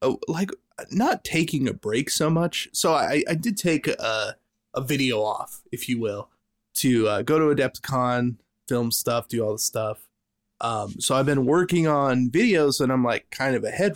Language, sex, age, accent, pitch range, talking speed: English, male, 20-39, American, 110-140 Hz, 190 wpm